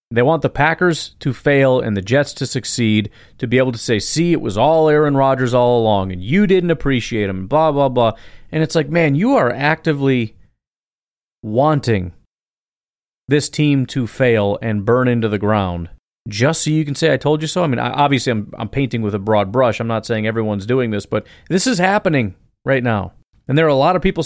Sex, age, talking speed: male, 30-49, 215 wpm